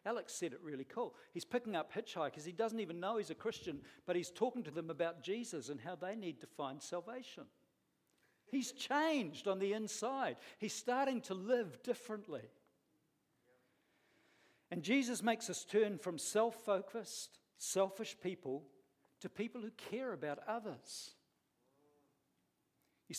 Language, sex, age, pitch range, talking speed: English, male, 60-79, 170-230 Hz, 145 wpm